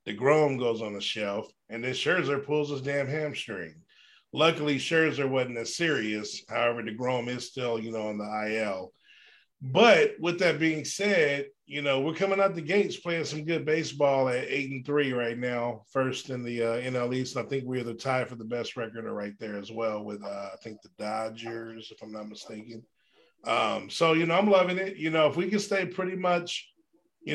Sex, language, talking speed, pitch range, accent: male, English, 215 wpm, 120-160 Hz, American